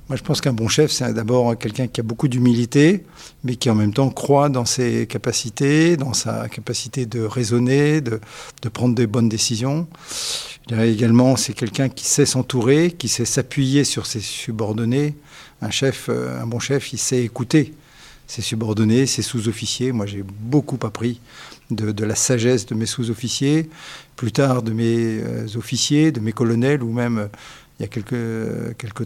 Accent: French